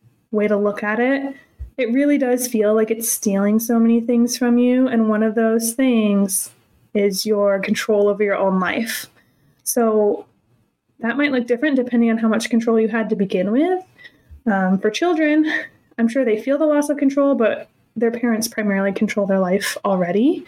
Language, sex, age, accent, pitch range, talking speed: English, female, 20-39, American, 210-250 Hz, 185 wpm